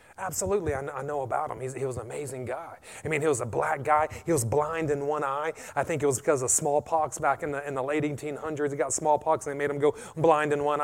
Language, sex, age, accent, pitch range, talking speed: English, male, 30-49, American, 150-220 Hz, 280 wpm